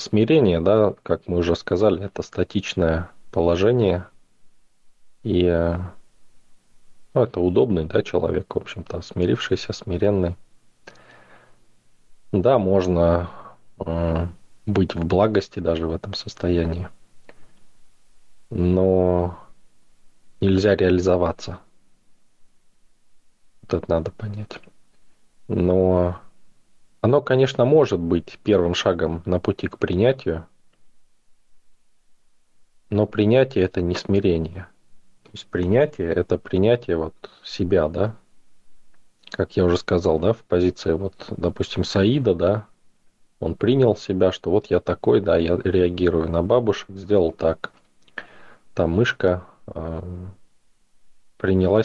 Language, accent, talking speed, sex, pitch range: Russian, native, 105 wpm, male, 85-100 Hz